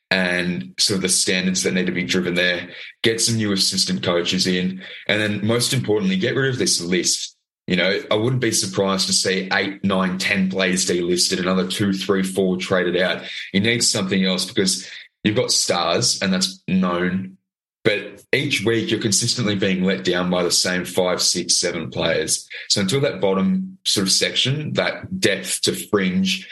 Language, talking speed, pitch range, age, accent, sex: English, 185 wpm, 90-105 Hz, 20-39, Australian, male